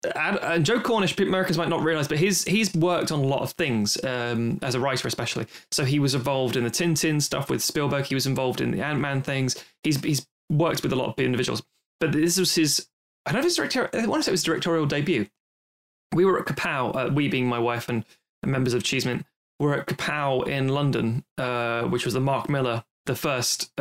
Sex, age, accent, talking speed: male, 20-39, British, 230 wpm